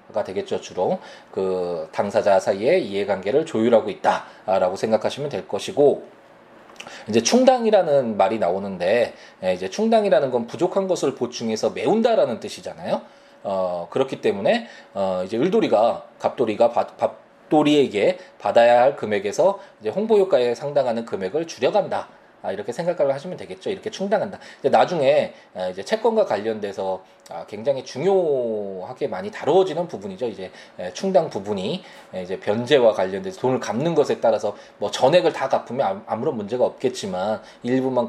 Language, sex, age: Korean, male, 20-39